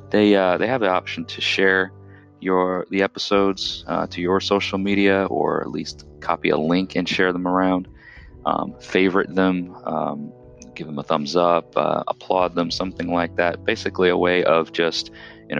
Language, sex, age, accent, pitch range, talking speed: English, male, 30-49, American, 85-95 Hz, 180 wpm